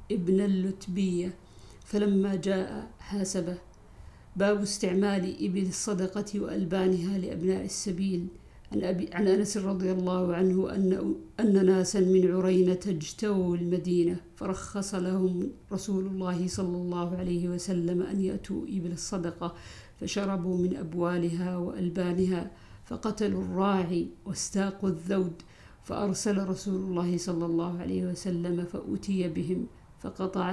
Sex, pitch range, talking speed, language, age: female, 180-190 Hz, 110 wpm, Arabic, 50-69